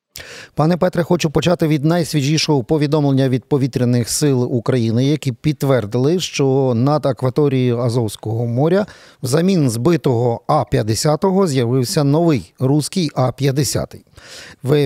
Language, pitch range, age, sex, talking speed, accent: Ukrainian, 125-155 Hz, 40-59, male, 105 wpm, native